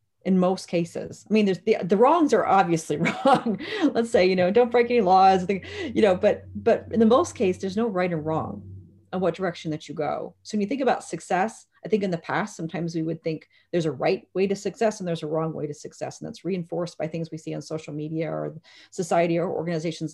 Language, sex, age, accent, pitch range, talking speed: English, female, 30-49, American, 160-200 Hz, 240 wpm